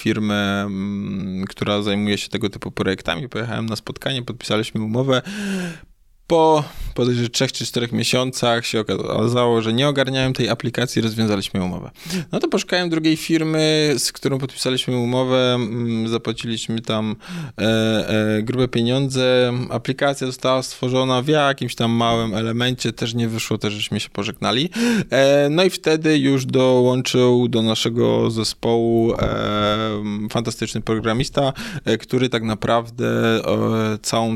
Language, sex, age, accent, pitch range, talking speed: Polish, male, 20-39, native, 110-130 Hz, 120 wpm